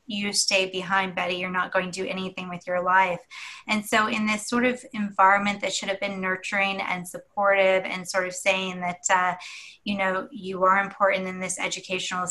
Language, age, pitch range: English, 20-39, 185-205 Hz